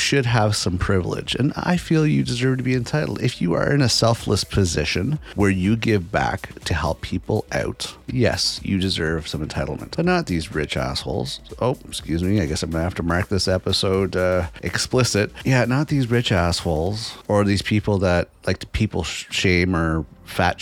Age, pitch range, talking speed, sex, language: 30-49, 85-115 Hz, 190 wpm, male, English